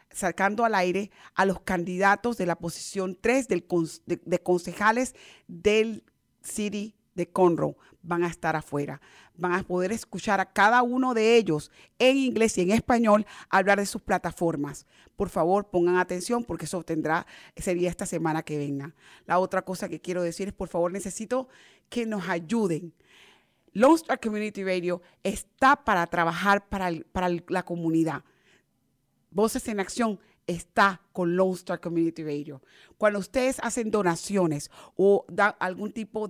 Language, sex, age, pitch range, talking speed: English, female, 40-59, 175-210 Hz, 160 wpm